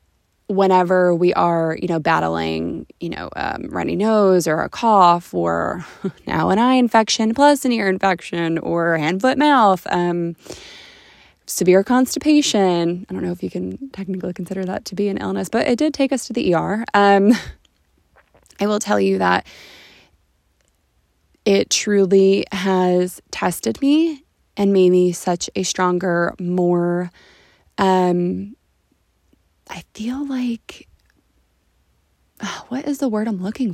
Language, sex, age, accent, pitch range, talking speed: English, female, 20-39, American, 170-215 Hz, 140 wpm